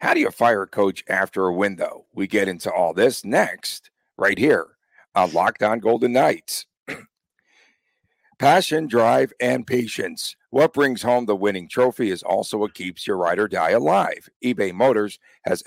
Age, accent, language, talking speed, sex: 60-79, American, English, 170 wpm, male